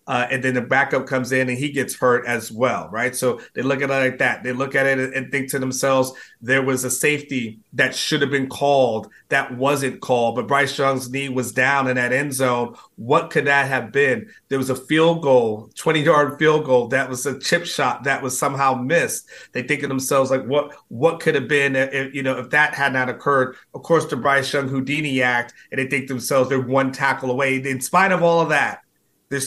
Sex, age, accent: male, 30-49, American